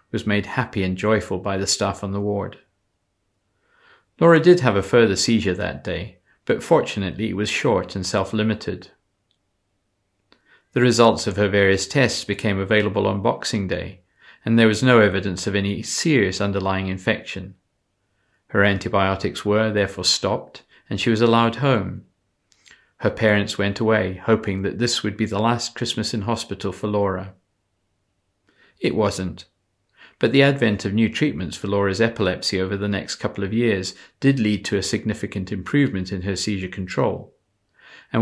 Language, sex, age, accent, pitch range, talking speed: English, male, 40-59, British, 95-115 Hz, 160 wpm